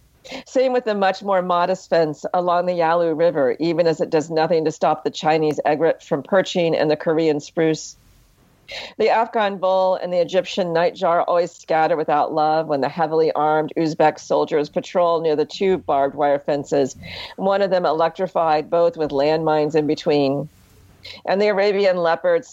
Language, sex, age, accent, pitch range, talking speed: English, female, 50-69, American, 155-185 Hz, 170 wpm